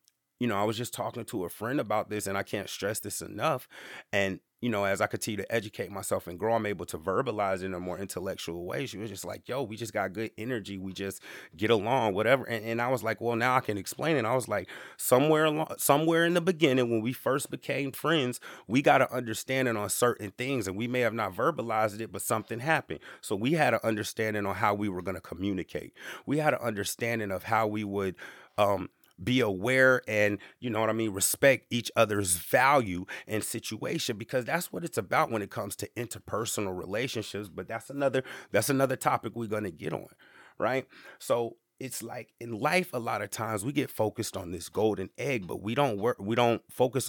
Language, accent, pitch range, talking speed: English, American, 100-125 Hz, 225 wpm